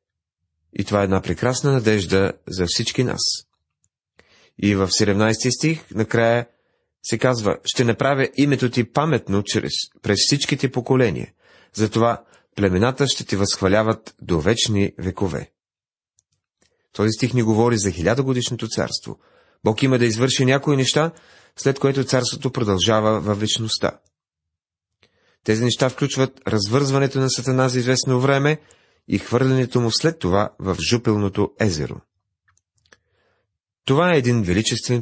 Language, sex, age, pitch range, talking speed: Bulgarian, male, 30-49, 100-130 Hz, 125 wpm